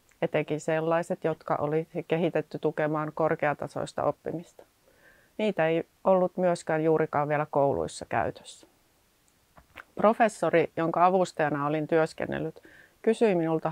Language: Finnish